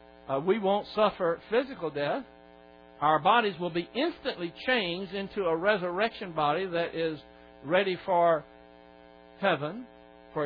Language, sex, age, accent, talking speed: English, male, 60-79, American, 125 wpm